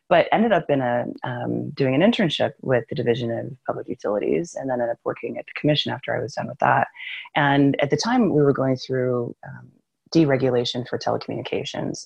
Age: 30-49